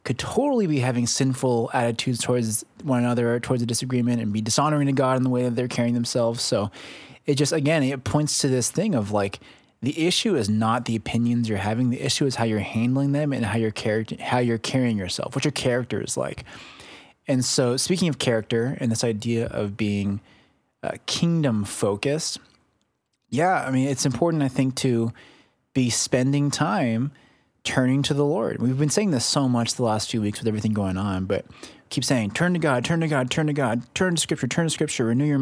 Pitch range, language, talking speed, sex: 115-145 Hz, English, 210 wpm, male